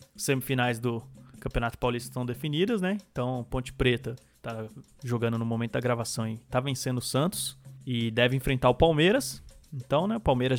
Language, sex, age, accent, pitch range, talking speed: Portuguese, male, 20-39, Brazilian, 125-140 Hz, 170 wpm